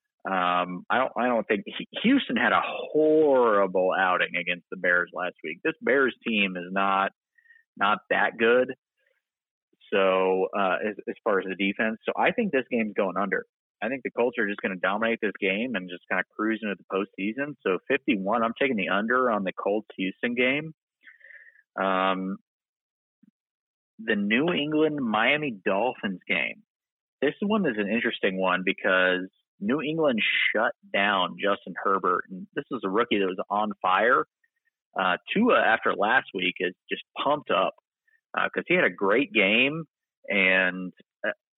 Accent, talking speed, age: American, 165 wpm, 30-49